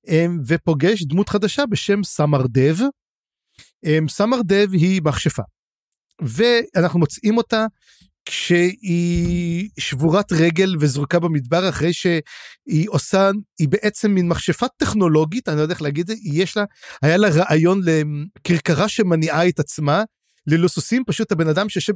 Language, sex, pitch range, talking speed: Hebrew, male, 155-215 Hz, 125 wpm